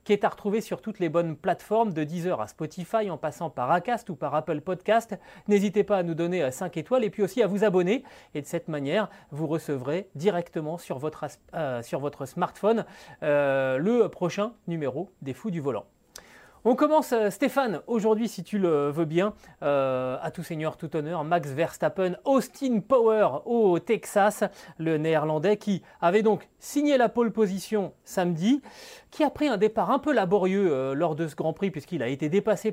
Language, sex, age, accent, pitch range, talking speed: French, male, 30-49, French, 160-220 Hz, 185 wpm